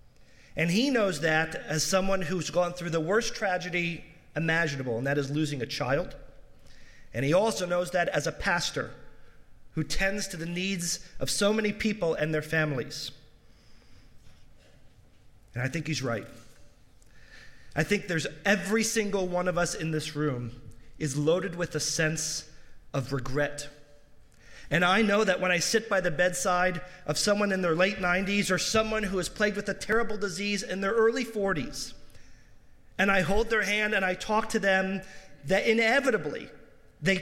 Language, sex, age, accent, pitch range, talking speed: English, male, 30-49, American, 140-190 Hz, 170 wpm